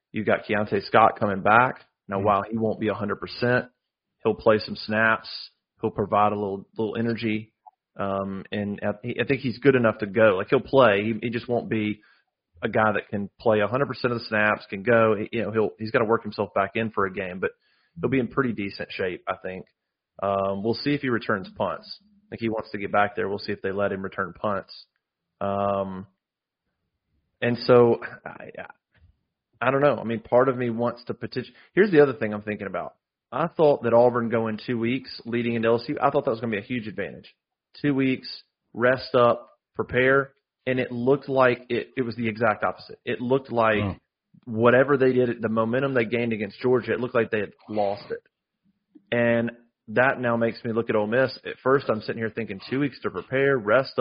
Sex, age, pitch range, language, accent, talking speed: male, 30-49, 105-125 Hz, English, American, 215 wpm